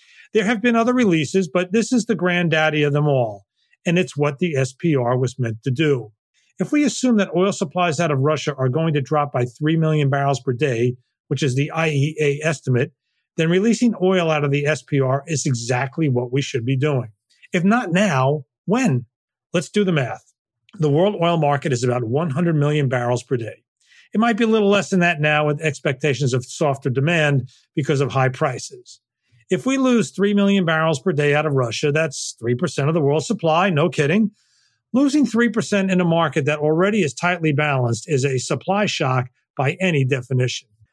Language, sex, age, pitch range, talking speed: English, male, 40-59, 140-190 Hz, 195 wpm